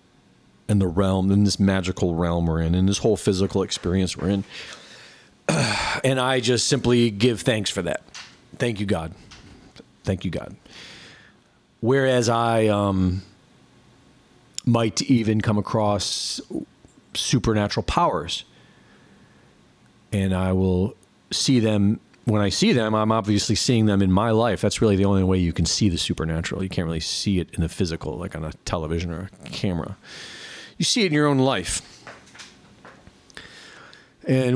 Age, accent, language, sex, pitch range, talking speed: 40-59, American, English, male, 95-125 Hz, 155 wpm